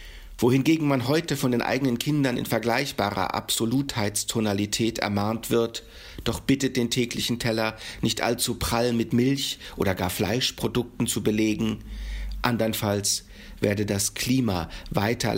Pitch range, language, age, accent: 95-120 Hz, German, 50-69, German